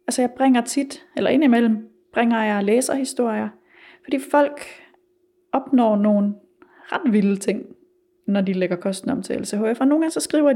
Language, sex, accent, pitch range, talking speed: Danish, female, native, 205-295 Hz, 170 wpm